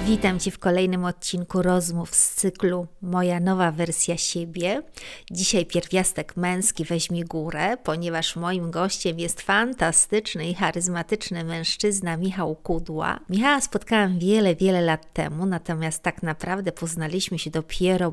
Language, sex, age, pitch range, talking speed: Polish, female, 50-69, 165-195 Hz, 130 wpm